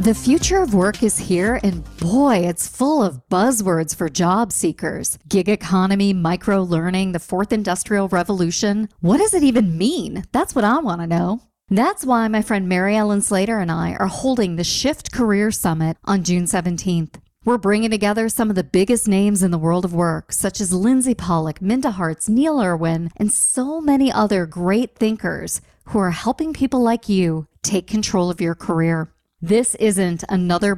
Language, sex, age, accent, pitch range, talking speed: English, female, 40-59, American, 180-235 Hz, 180 wpm